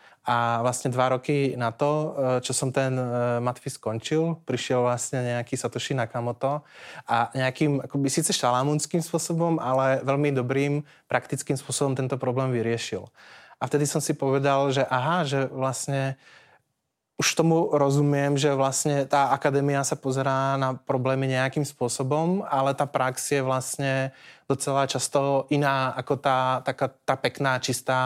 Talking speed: 140 wpm